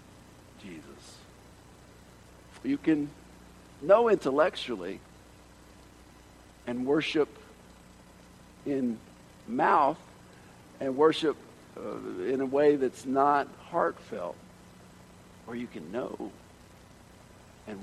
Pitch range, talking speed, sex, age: 120-165 Hz, 75 wpm, male, 60-79